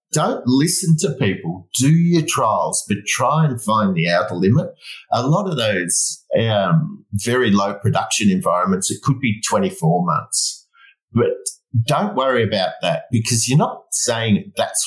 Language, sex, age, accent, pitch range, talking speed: English, male, 50-69, Australian, 100-155 Hz, 155 wpm